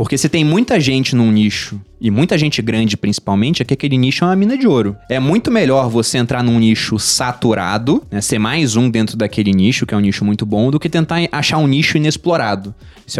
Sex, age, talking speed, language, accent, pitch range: male, 20-39, 225 wpm, Portuguese, Brazilian, 120-175 Hz